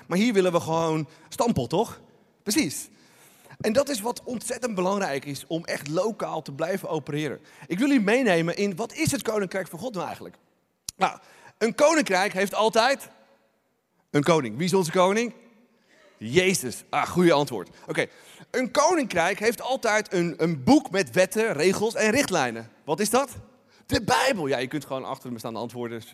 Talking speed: 170 wpm